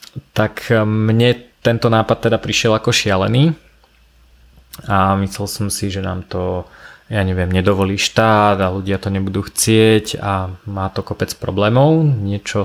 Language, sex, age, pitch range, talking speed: Slovak, male, 20-39, 100-115 Hz, 140 wpm